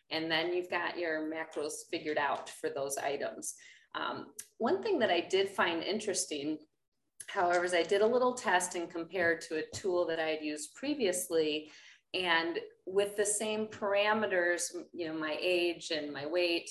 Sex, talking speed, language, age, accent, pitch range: female, 170 wpm, English, 30-49, American, 160-195 Hz